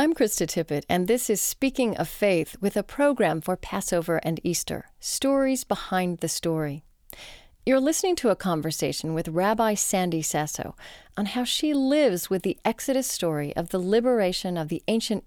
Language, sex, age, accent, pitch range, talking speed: English, female, 40-59, American, 170-245 Hz, 170 wpm